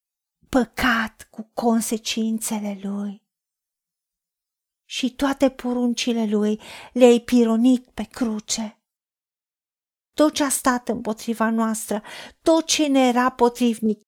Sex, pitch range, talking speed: female, 215-255 Hz, 100 wpm